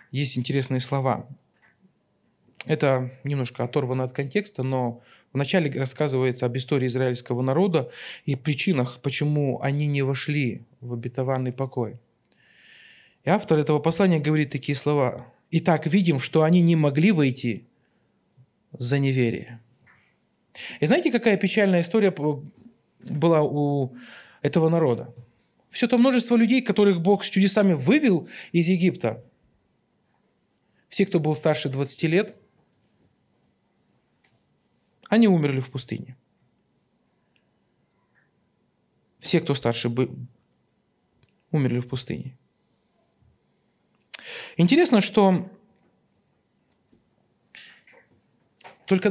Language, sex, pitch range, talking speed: Russian, male, 130-190 Hz, 100 wpm